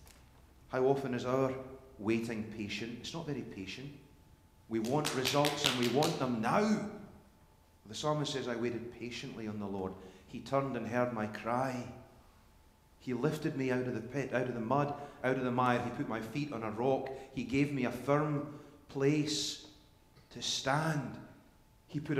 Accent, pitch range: British, 105-135 Hz